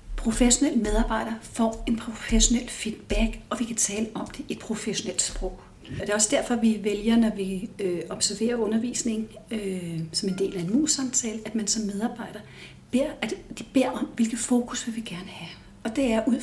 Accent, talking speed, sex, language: native, 195 wpm, female, Danish